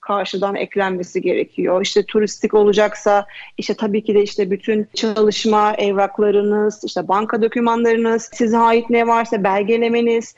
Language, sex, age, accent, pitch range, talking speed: Turkish, female, 40-59, native, 205-235 Hz, 125 wpm